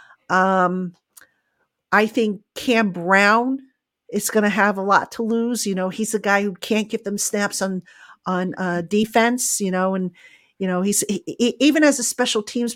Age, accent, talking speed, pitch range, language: 50-69, American, 180 wpm, 190-225 Hz, English